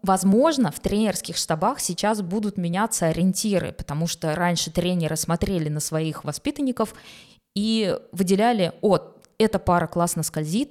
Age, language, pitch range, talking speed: 20-39, Russian, 165-210 Hz, 130 wpm